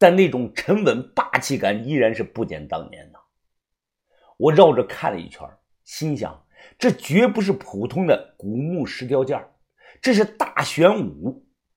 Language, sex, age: Chinese, male, 50-69